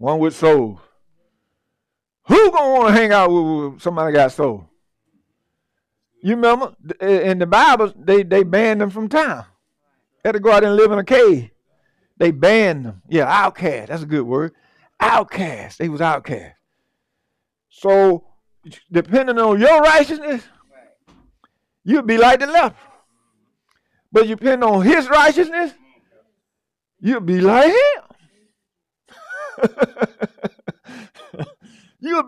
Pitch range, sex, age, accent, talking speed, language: 165-260 Hz, male, 50-69, American, 125 wpm, English